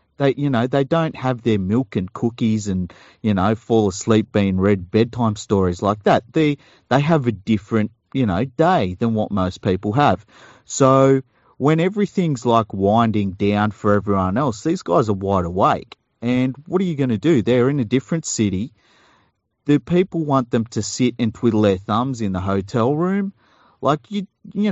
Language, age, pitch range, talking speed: English, 40-59, 105-135 Hz, 185 wpm